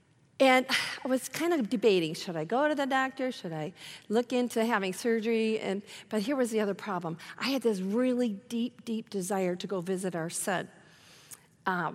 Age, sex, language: 40-59, female, English